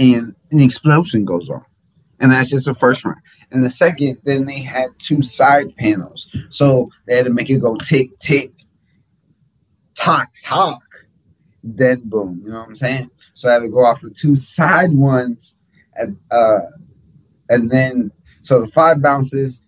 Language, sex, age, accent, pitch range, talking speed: English, male, 30-49, American, 110-140 Hz, 170 wpm